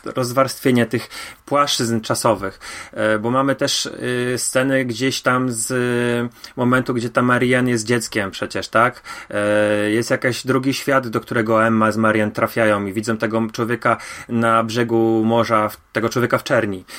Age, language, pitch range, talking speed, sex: 30-49, Polish, 110-135 Hz, 140 wpm, male